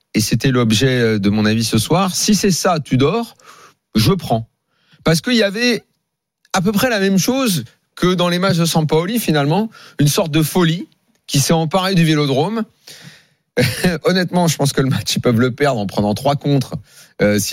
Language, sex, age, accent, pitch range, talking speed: French, male, 40-59, French, 125-170 Hz, 195 wpm